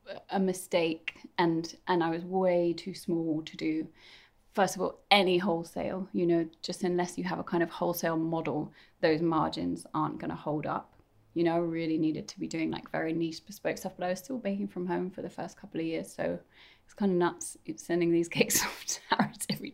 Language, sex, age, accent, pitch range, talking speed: English, female, 20-39, British, 165-190 Hz, 215 wpm